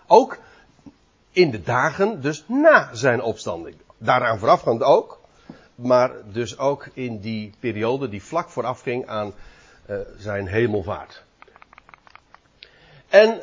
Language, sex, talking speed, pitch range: Dutch, male, 110 wpm, 115-175 Hz